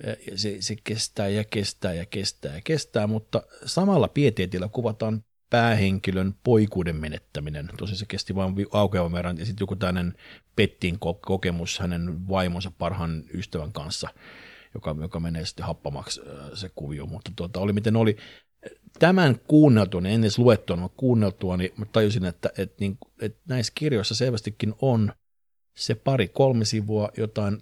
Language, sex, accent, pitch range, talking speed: Finnish, male, native, 90-115 Hz, 140 wpm